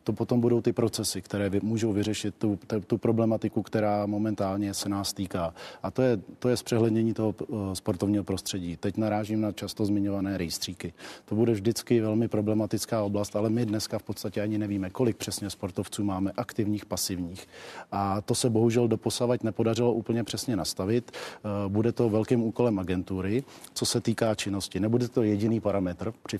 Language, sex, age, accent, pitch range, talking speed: Czech, male, 40-59, native, 100-115 Hz, 165 wpm